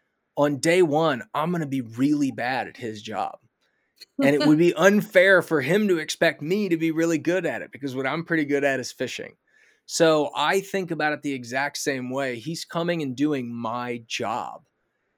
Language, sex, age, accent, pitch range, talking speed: English, male, 20-39, American, 125-160 Hz, 200 wpm